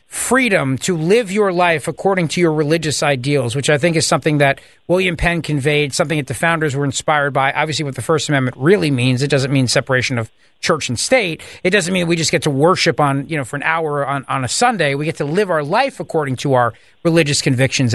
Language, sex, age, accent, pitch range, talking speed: English, male, 40-59, American, 145-190 Hz, 235 wpm